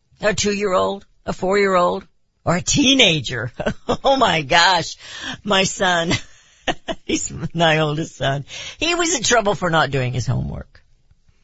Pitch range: 125-185 Hz